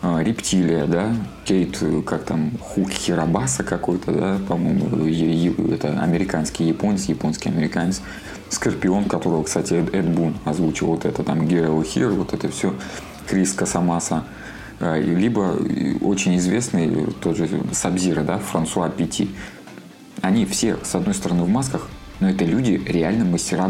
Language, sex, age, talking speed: Russian, male, 20-39, 125 wpm